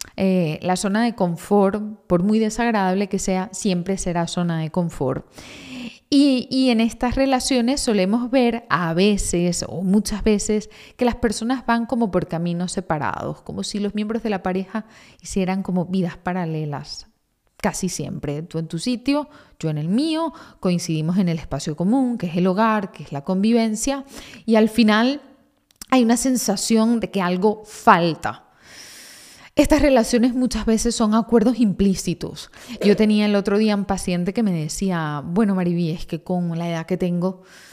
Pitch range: 175-235 Hz